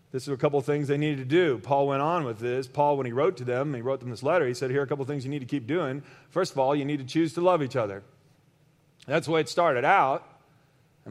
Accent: American